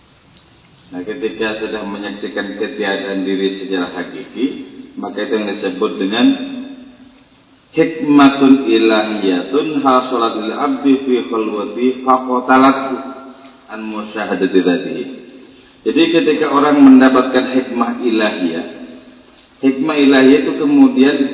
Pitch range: 110-150 Hz